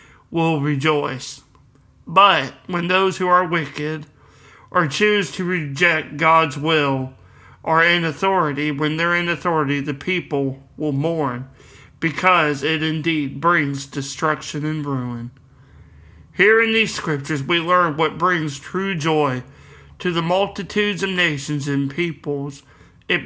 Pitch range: 140-175 Hz